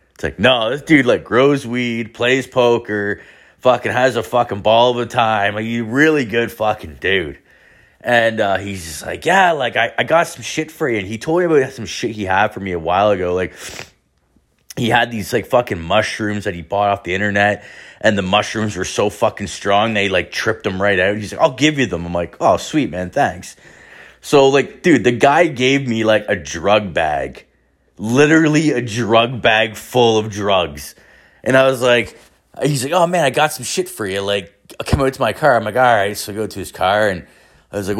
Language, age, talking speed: English, 30-49, 225 wpm